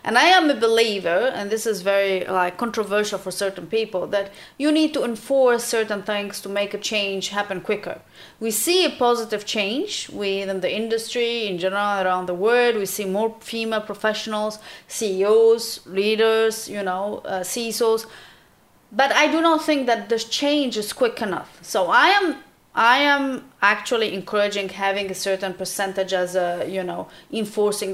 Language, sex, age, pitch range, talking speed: English, female, 30-49, 200-245 Hz, 170 wpm